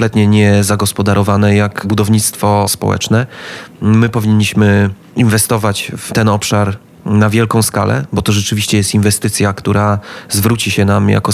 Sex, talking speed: male, 130 wpm